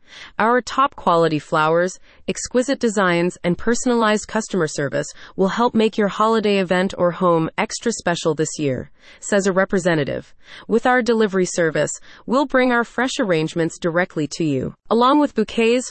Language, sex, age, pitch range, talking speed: English, female, 30-49, 170-235 Hz, 145 wpm